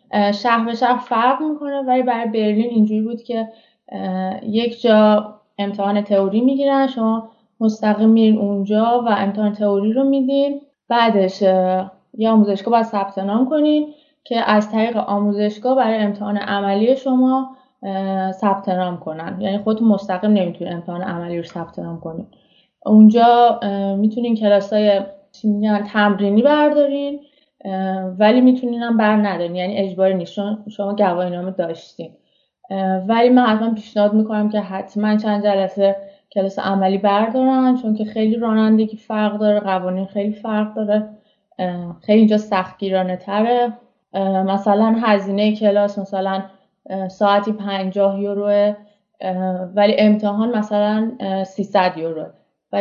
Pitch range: 195-225 Hz